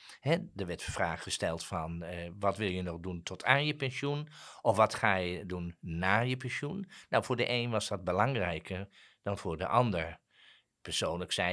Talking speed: 195 wpm